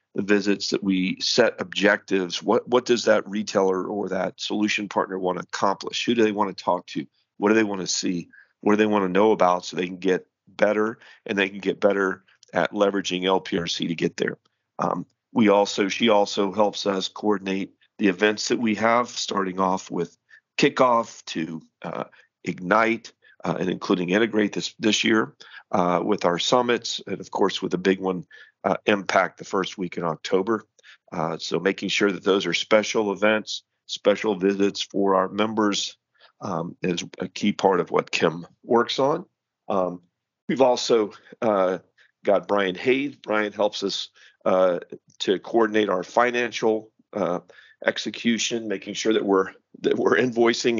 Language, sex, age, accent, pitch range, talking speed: English, male, 40-59, American, 95-110 Hz, 170 wpm